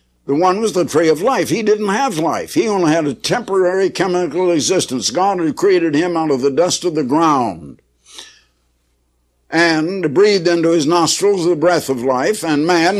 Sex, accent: male, American